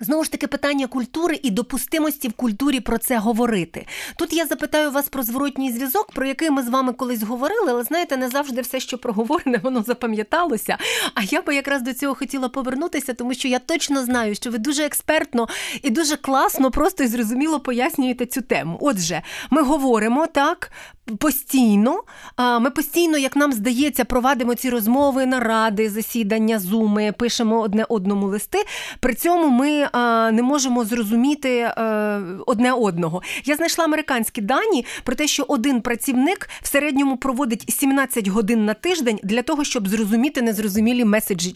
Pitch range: 230-285 Hz